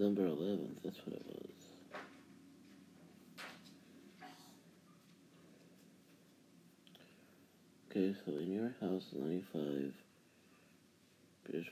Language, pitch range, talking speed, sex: English, 80-95 Hz, 60 wpm, male